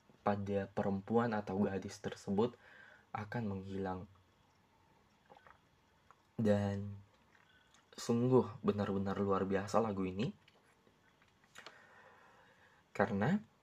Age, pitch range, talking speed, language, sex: 20-39, 95-110 Hz, 65 wpm, Indonesian, male